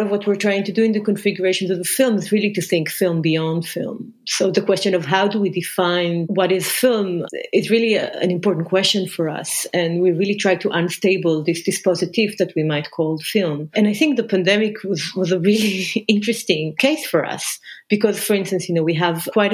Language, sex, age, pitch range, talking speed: English, female, 30-49, 170-205 Hz, 220 wpm